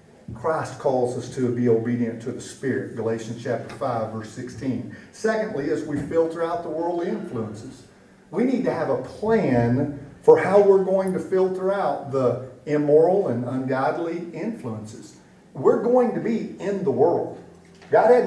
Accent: American